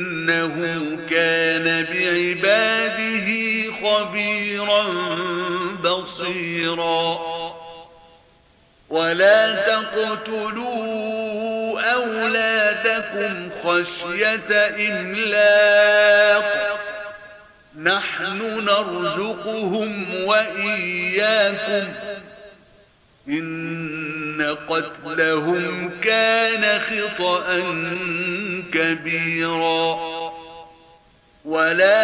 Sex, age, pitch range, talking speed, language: male, 50-69, 175-215 Hz, 35 wpm, Arabic